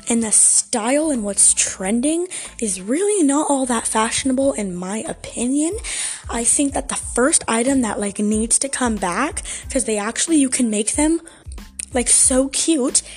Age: 10-29